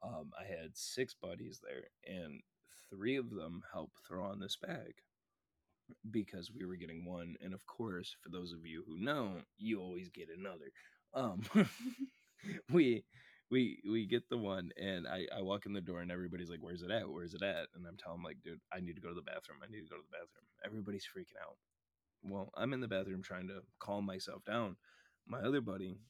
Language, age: English, 20-39